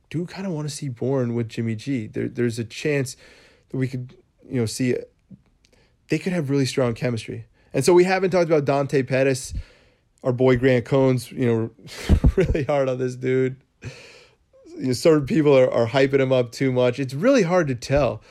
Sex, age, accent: male, 20-39, American